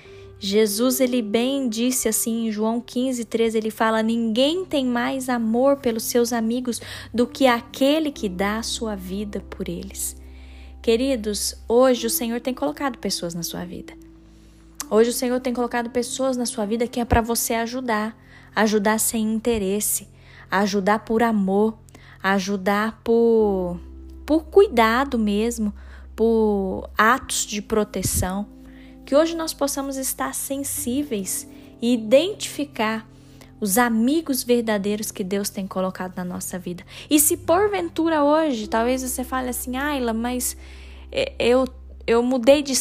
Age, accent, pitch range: 10-29, Brazilian, 210-260 Hz